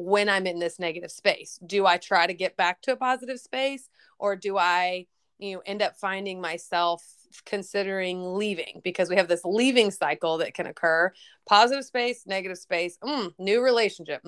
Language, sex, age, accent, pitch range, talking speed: English, female, 30-49, American, 170-205 Hz, 180 wpm